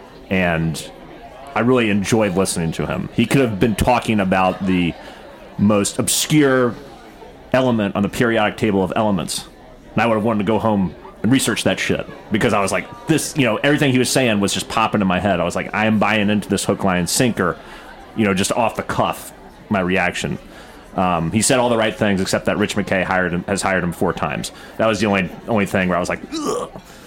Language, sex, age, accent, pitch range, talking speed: English, male, 30-49, American, 95-120 Hz, 225 wpm